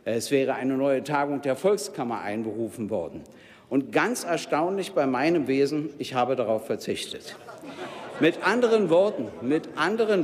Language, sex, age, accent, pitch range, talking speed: German, male, 60-79, German, 155-200 Hz, 140 wpm